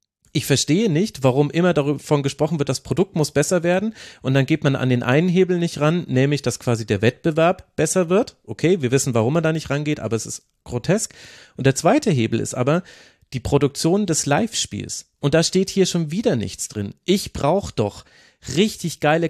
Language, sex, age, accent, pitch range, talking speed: German, male, 40-59, German, 125-160 Hz, 200 wpm